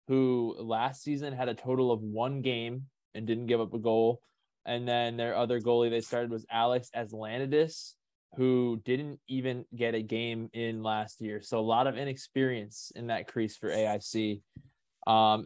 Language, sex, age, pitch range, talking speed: English, male, 20-39, 115-130 Hz, 175 wpm